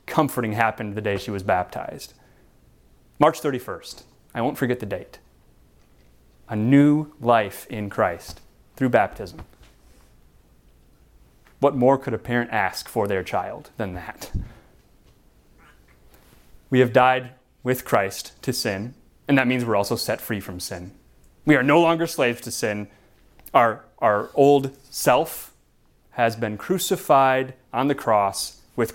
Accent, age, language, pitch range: American, 30-49, English, 105-145 Hz